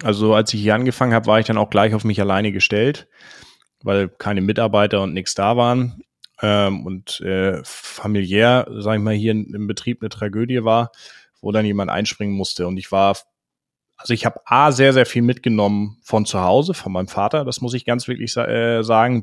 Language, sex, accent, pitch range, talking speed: German, male, German, 95-115 Hz, 190 wpm